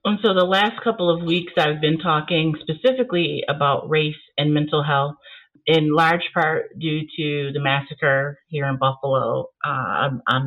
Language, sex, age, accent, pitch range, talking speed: English, female, 40-59, American, 145-170 Hz, 160 wpm